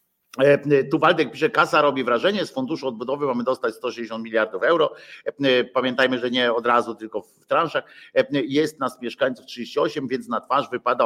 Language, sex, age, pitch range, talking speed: Polish, male, 50-69, 120-165 Hz, 165 wpm